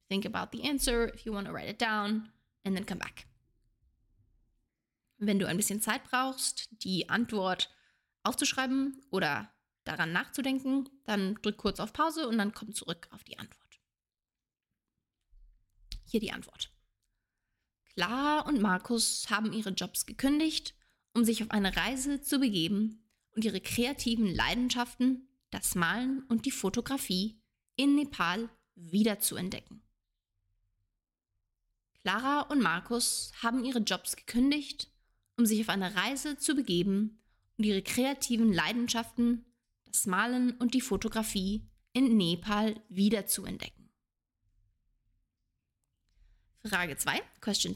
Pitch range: 185-245 Hz